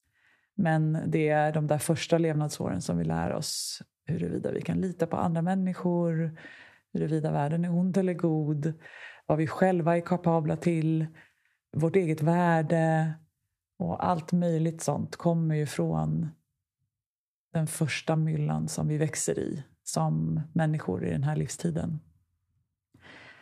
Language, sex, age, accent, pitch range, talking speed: Swedish, female, 30-49, native, 130-165 Hz, 135 wpm